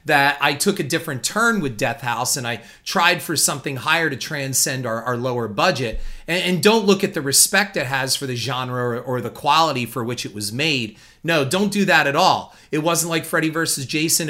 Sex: male